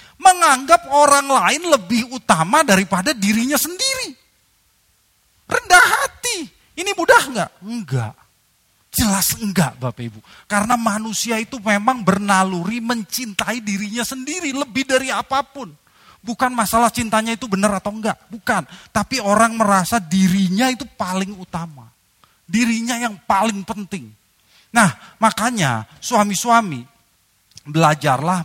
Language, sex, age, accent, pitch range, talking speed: Indonesian, male, 30-49, native, 160-245 Hz, 110 wpm